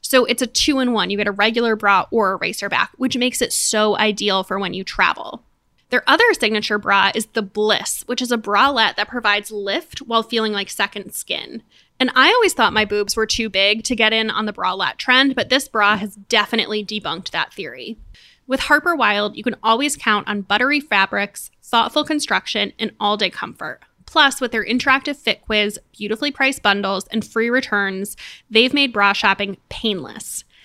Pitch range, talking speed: 205-250 Hz, 190 wpm